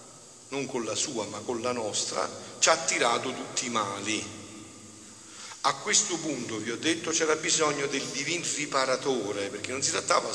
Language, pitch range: Italian, 110-140 Hz